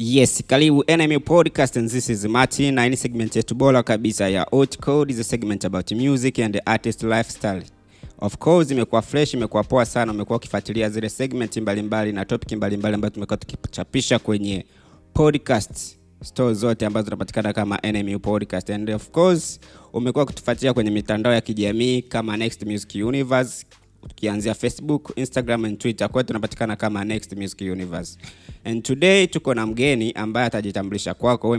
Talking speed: 150 wpm